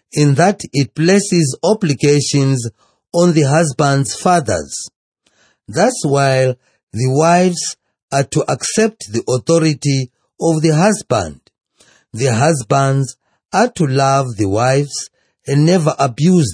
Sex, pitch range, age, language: male, 130-165 Hz, 40-59, English